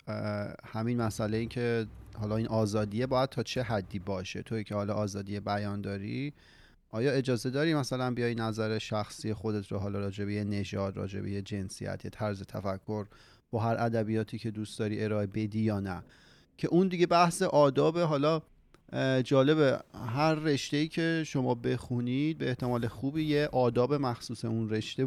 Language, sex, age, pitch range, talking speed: Persian, male, 30-49, 110-135 Hz, 160 wpm